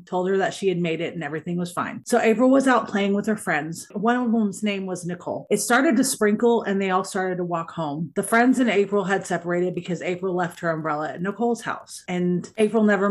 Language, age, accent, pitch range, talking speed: English, 30-49, American, 170-205 Hz, 245 wpm